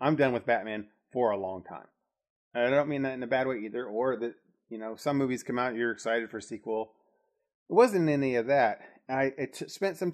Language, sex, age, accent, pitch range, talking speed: English, male, 30-49, American, 110-140 Hz, 250 wpm